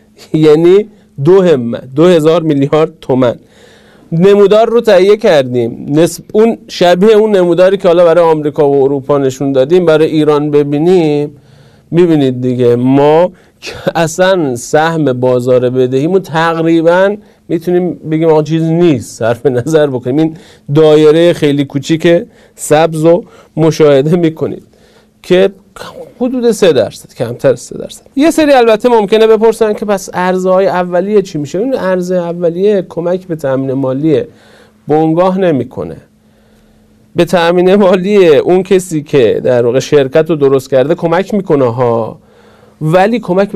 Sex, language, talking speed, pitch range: male, Persian, 135 wpm, 145-195 Hz